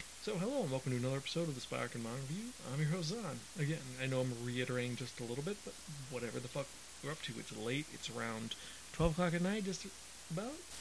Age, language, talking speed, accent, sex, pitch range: 30-49, English, 245 wpm, American, male, 125-170 Hz